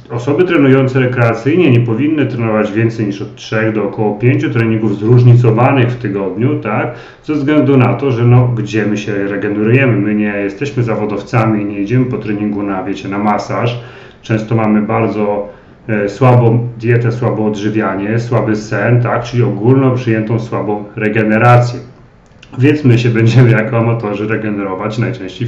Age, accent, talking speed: 40-59, native, 155 wpm